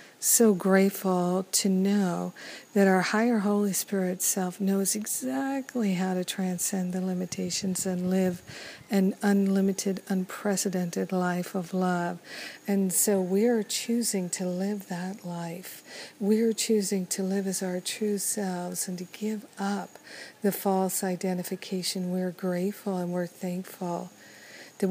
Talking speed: 140 wpm